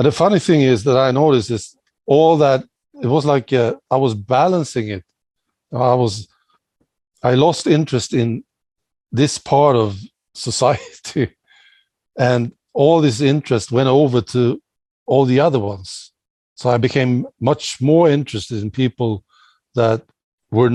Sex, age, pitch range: male, 60-79, 110-135 Hz